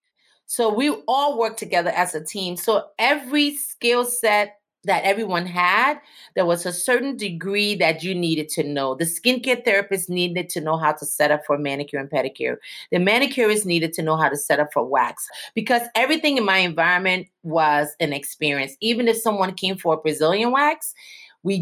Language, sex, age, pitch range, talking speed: English, female, 30-49, 160-215 Hz, 185 wpm